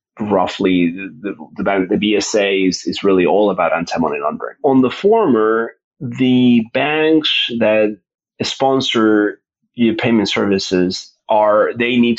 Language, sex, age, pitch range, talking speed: English, male, 30-49, 100-120 Hz, 135 wpm